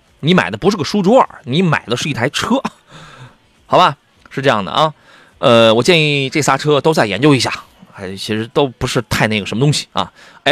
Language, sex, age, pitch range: Chinese, male, 30-49, 110-185 Hz